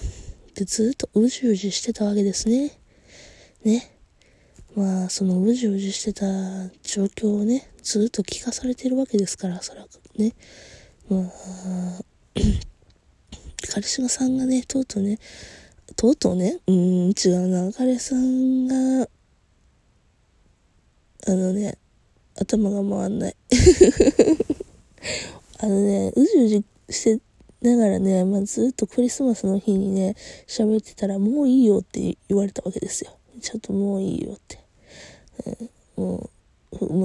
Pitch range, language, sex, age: 185-235 Hz, Japanese, female, 20-39